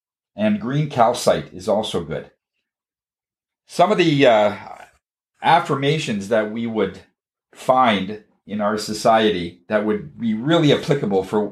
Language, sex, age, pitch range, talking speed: English, male, 50-69, 105-155 Hz, 125 wpm